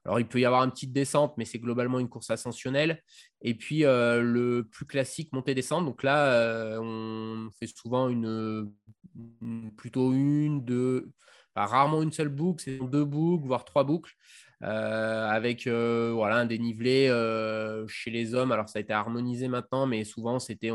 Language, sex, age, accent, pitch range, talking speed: French, male, 20-39, French, 115-135 Hz, 180 wpm